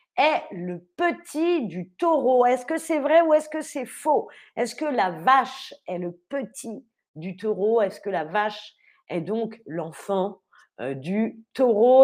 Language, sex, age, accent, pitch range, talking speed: French, female, 40-59, French, 220-290 Hz, 160 wpm